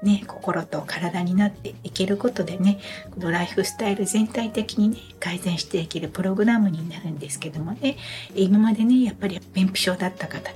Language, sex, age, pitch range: Japanese, female, 60-79, 180-225 Hz